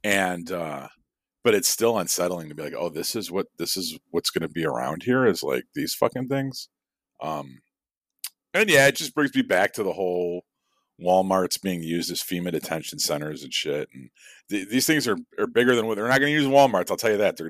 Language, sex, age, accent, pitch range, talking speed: English, male, 40-59, American, 90-125 Hz, 215 wpm